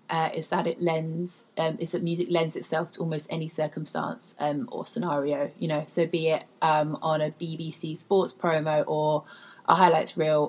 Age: 20-39